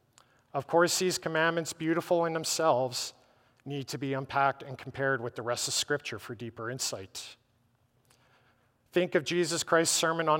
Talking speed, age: 155 wpm, 40-59